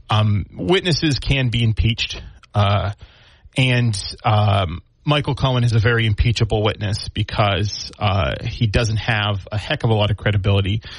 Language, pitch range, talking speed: English, 100-120 Hz, 145 wpm